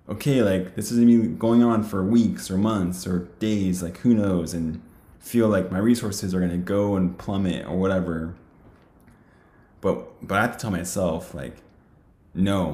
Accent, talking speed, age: American, 180 wpm, 20-39